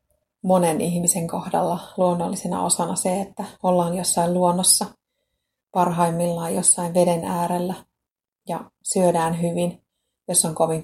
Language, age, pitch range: Finnish, 30-49, 170-195 Hz